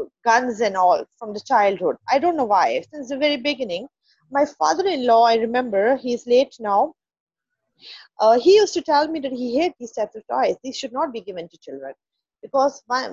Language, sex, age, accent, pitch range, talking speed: English, female, 30-49, Indian, 230-305 Hz, 190 wpm